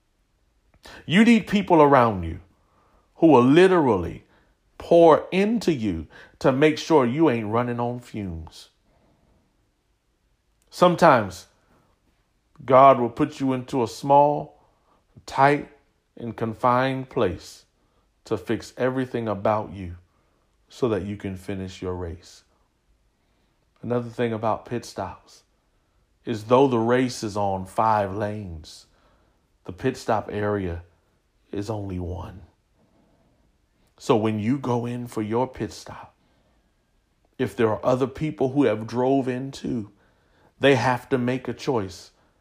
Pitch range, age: 100-130 Hz, 40-59